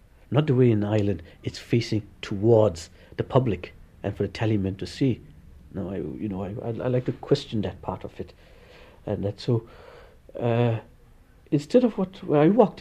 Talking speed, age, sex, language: 185 wpm, 60-79, male, English